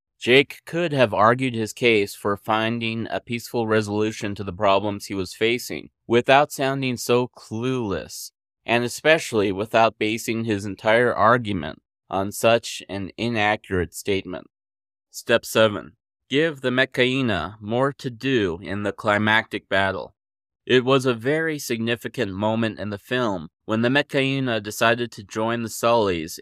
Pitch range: 100-120 Hz